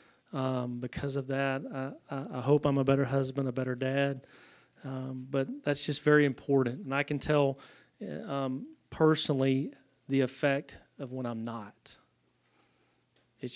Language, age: English, 30-49